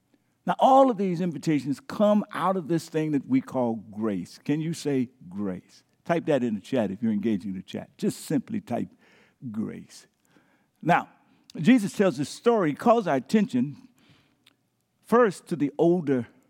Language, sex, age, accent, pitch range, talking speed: English, male, 60-79, American, 145-215 Hz, 165 wpm